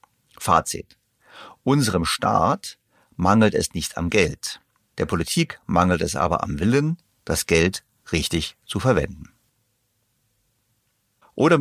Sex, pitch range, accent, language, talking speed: male, 95-115 Hz, German, German, 110 wpm